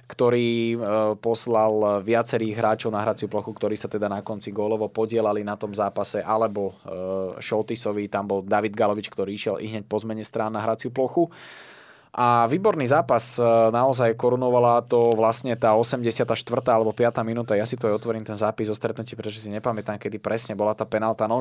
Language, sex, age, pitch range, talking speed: Slovak, male, 20-39, 105-120 Hz, 180 wpm